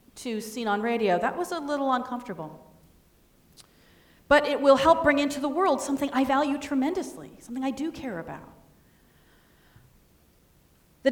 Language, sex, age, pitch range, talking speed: English, female, 40-59, 195-280 Hz, 145 wpm